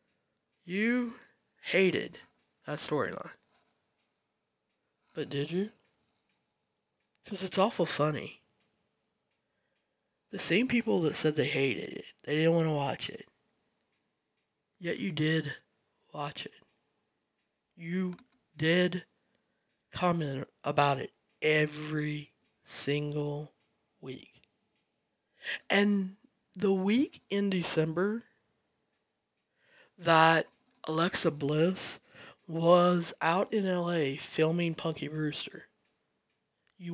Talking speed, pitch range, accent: 90 wpm, 150-205 Hz, American